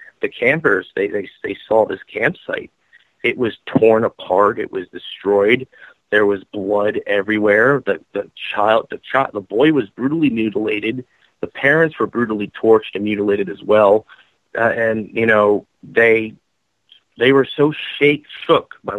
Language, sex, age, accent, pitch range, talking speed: English, male, 30-49, American, 105-135 Hz, 155 wpm